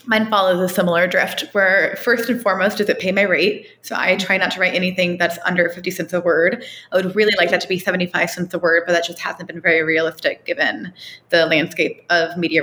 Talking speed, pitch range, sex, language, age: 240 wpm, 175-210 Hz, female, English, 20-39